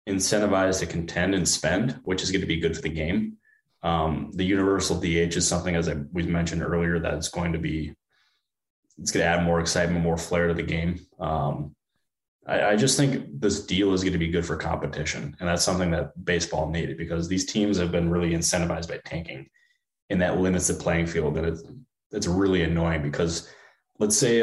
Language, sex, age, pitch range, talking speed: English, male, 20-39, 85-95 Hz, 200 wpm